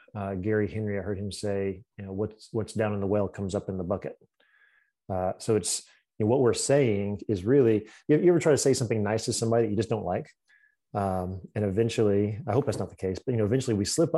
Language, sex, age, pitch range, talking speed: English, male, 30-49, 100-120 Hz, 250 wpm